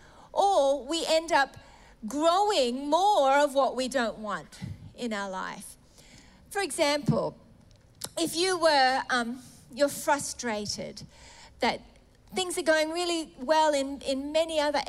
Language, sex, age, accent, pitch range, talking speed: English, female, 40-59, Australian, 225-280 Hz, 130 wpm